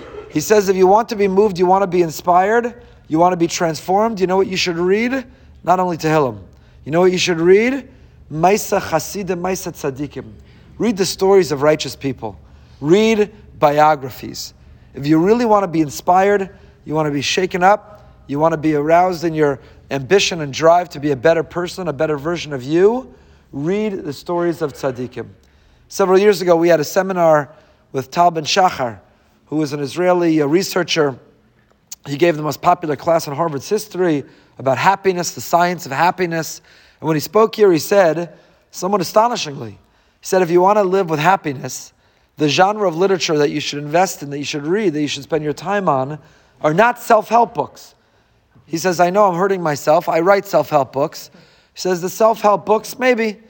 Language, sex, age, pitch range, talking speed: English, male, 30-49, 150-195 Hz, 195 wpm